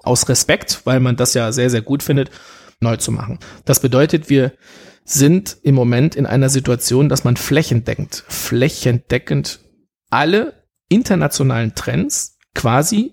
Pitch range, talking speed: 120-150 Hz, 135 wpm